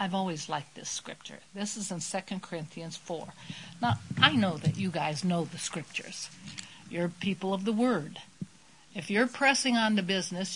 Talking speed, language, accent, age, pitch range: 175 wpm, English, American, 60-79, 165-205 Hz